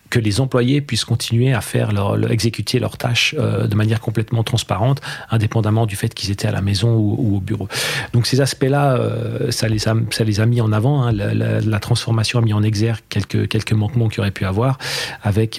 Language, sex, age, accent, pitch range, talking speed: French, male, 40-59, French, 105-120 Hz, 230 wpm